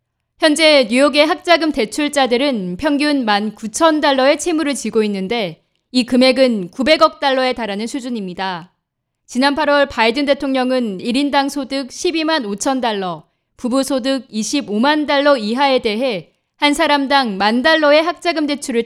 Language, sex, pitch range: Korean, female, 210-290 Hz